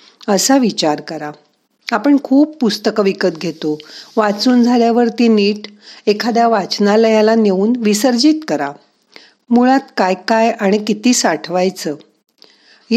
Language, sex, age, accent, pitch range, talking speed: Marathi, female, 50-69, native, 185-235 Hz, 100 wpm